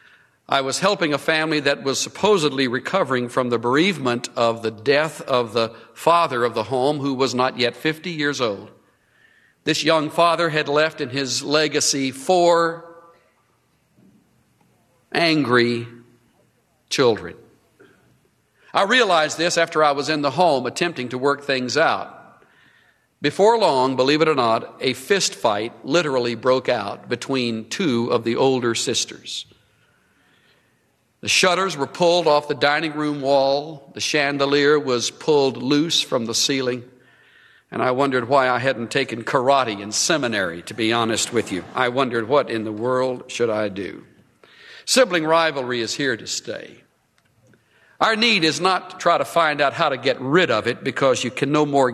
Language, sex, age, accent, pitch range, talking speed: English, male, 50-69, American, 125-155 Hz, 160 wpm